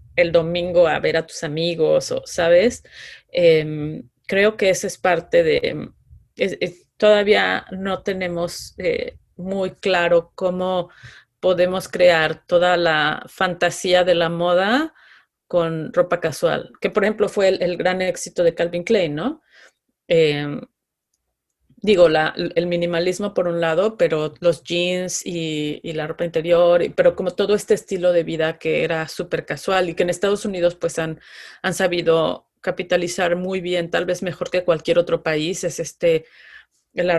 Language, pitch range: Spanish, 170-195 Hz